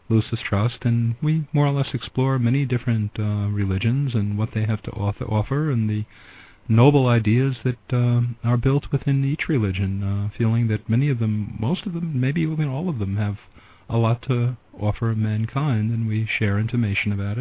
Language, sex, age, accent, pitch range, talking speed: English, male, 50-69, American, 105-130 Hz, 190 wpm